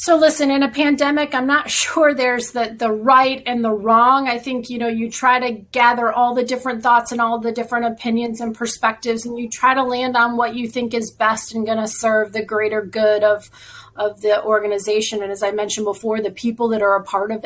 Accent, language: American, English